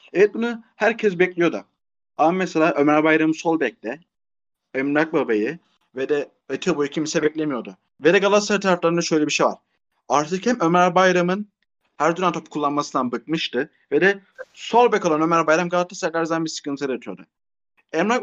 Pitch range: 155-195 Hz